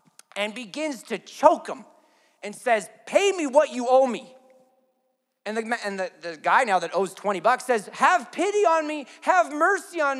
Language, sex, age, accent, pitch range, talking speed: English, male, 30-49, American, 170-255 Hz, 175 wpm